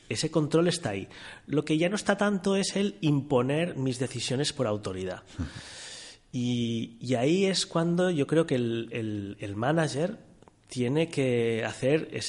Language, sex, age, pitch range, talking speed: Spanish, male, 30-49, 115-155 Hz, 140 wpm